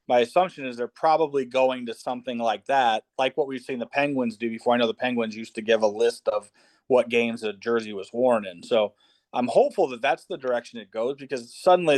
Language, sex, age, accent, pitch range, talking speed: English, male, 30-49, American, 115-135 Hz, 230 wpm